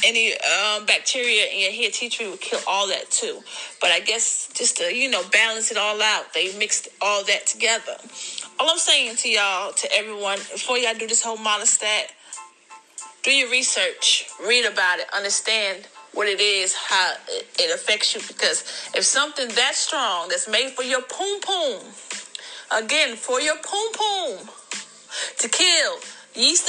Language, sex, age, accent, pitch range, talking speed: English, female, 30-49, American, 210-315 Hz, 165 wpm